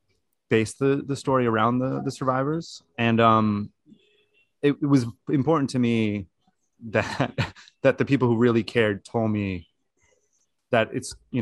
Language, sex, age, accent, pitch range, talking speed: English, male, 30-49, American, 105-125 Hz, 145 wpm